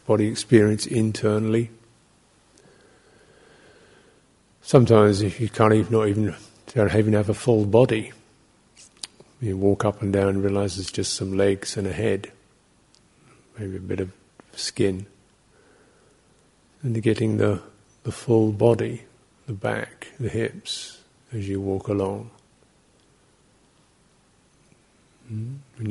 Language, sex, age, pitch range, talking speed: English, male, 50-69, 100-110 Hz, 115 wpm